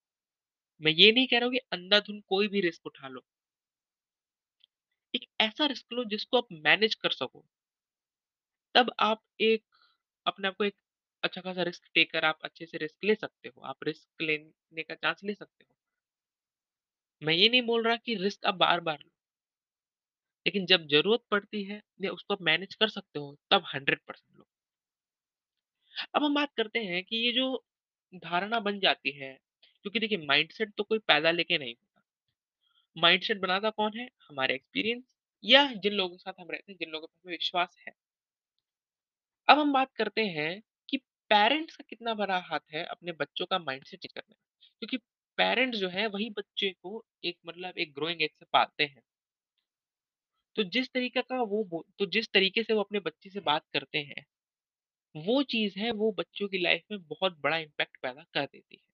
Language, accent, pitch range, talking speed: Hindi, native, 165-225 Hz, 180 wpm